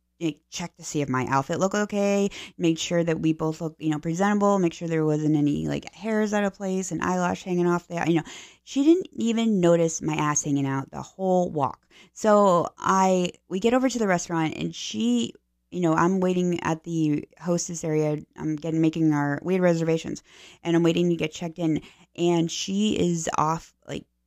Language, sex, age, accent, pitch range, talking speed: English, female, 20-39, American, 155-190 Hz, 205 wpm